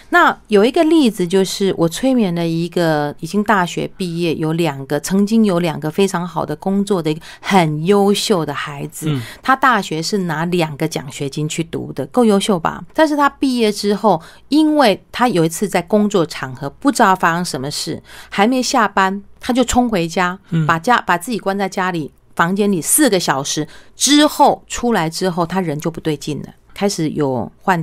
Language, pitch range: Chinese, 160-210 Hz